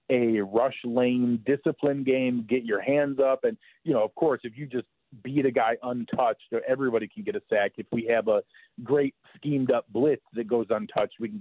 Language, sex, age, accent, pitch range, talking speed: English, male, 40-59, American, 115-140 Hz, 205 wpm